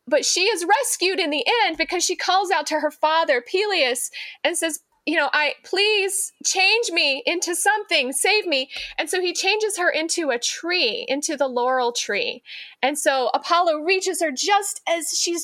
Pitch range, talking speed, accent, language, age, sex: 235-330 Hz, 185 wpm, American, English, 30-49, female